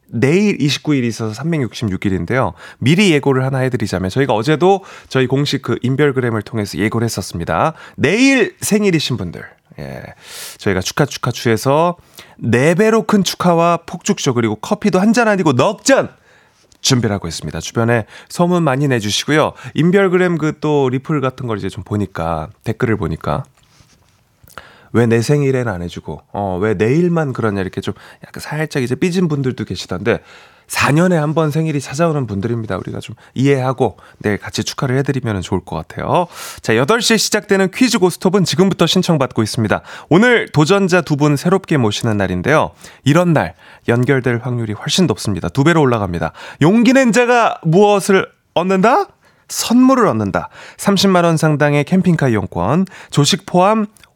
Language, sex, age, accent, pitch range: Korean, male, 30-49, native, 110-180 Hz